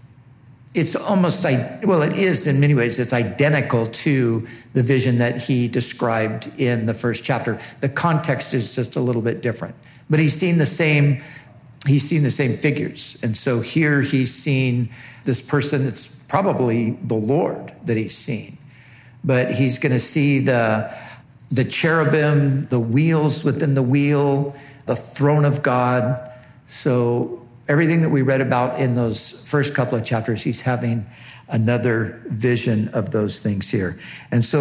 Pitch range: 120-145 Hz